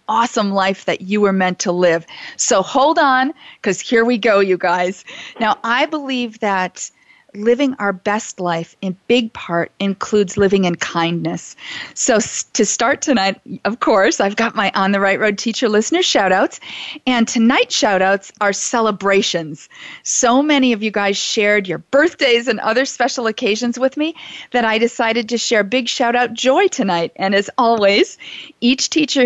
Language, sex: English, female